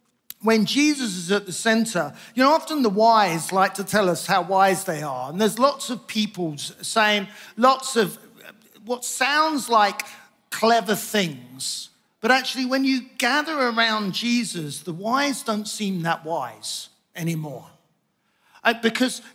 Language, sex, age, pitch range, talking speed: English, male, 50-69, 190-245 Hz, 145 wpm